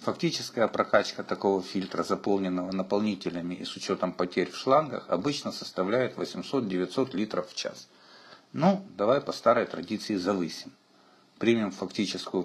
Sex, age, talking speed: male, 50-69, 125 wpm